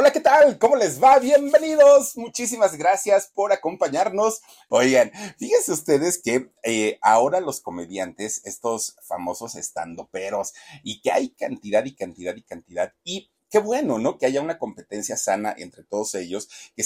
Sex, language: male, Spanish